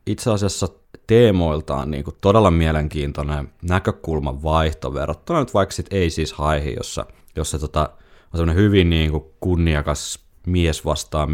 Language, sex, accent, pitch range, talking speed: Finnish, male, native, 75-90 Hz, 115 wpm